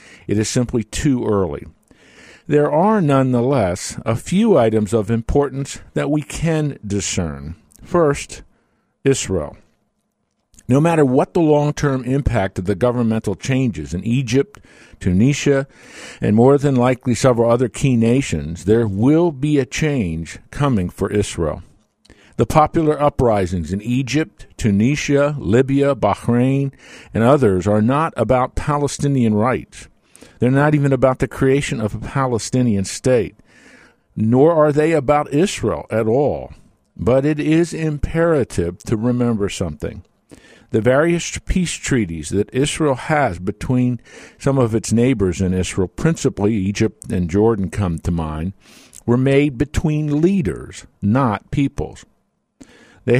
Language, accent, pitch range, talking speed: English, American, 105-140 Hz, 130 wpm